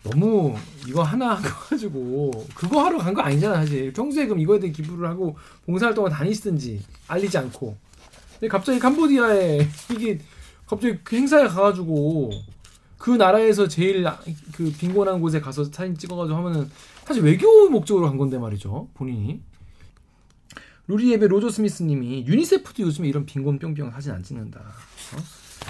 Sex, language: male, Korean